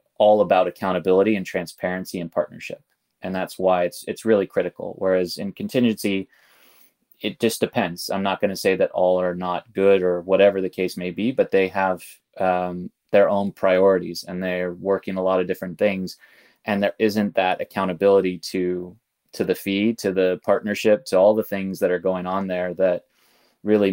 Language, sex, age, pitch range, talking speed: English, male, 20-39, 90-100 Hz, 185 wpm